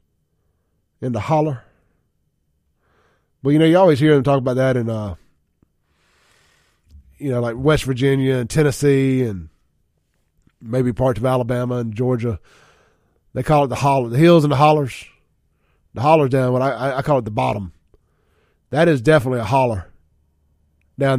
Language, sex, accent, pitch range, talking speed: English, male, American, 110-145 Hz, 155 wpm